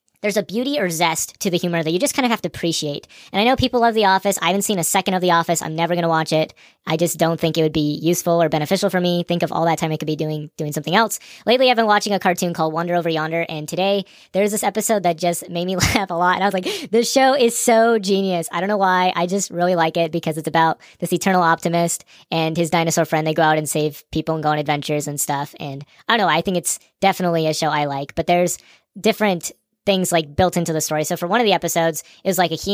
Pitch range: 160-195 Hz